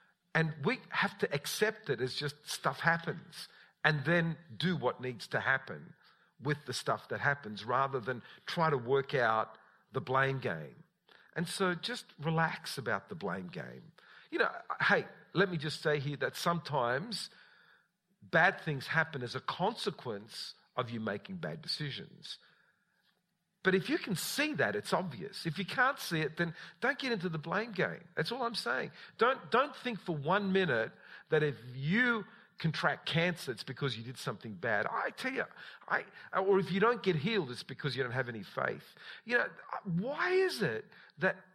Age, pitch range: 50-69, 140-200 Hz